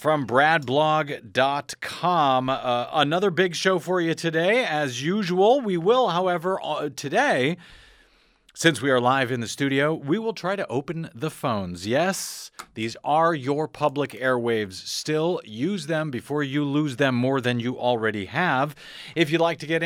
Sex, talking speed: male, 155 wpm